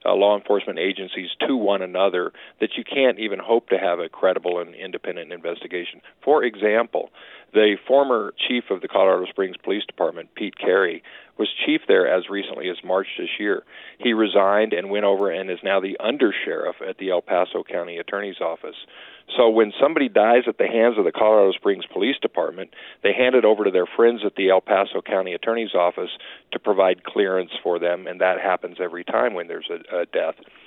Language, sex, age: English, male, 50-69